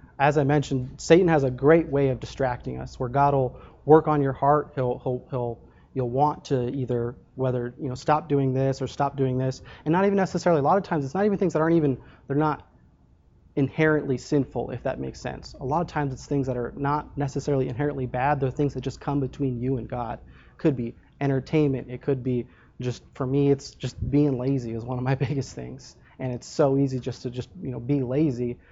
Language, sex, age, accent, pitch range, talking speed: English, male, 20-39, American, 125-140 Hz, 230 wpm